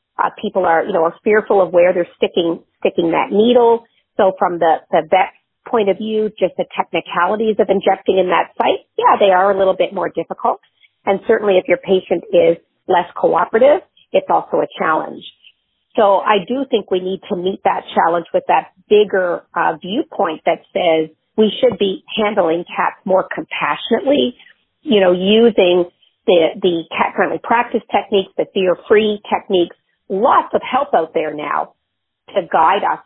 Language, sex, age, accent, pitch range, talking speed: English, female, 40-59, American, 175-220 Hz, 170 wpm